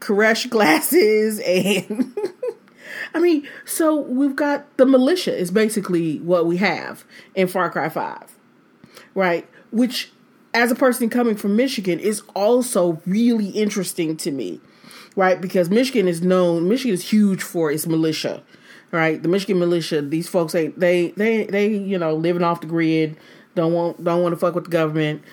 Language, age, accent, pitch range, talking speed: English, 30-49, American, 170-230 Hz, 155 wpm